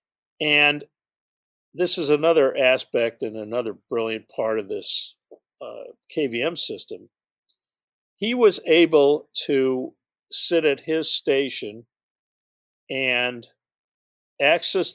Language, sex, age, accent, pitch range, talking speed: English, male, 50-69, American, 120-145 Hz, 95 wpm